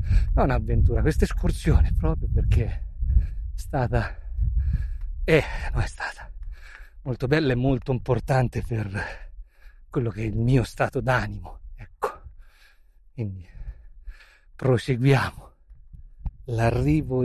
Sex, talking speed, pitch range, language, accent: male, 105 wpm, 80-115 Hz, Italian, native